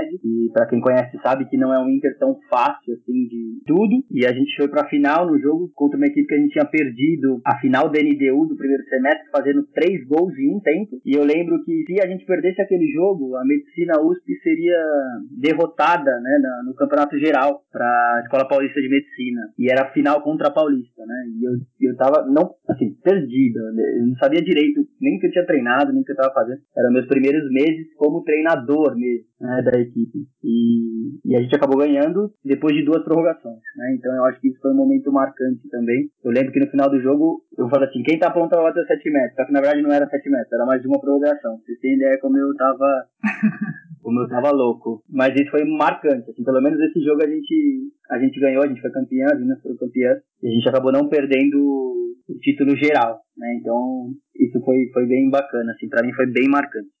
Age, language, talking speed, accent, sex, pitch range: 20-39, Portuguese, 220 wpm, Brazilian, male, 130-175 Hz